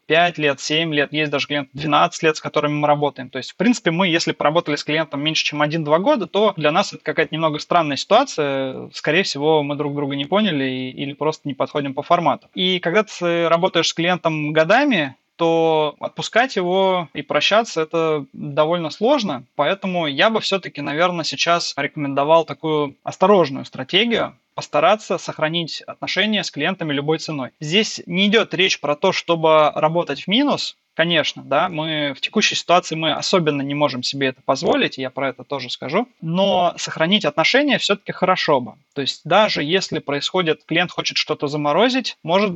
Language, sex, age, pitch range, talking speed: Russian, male, 20-39, 145-180 Hz, 175 wpm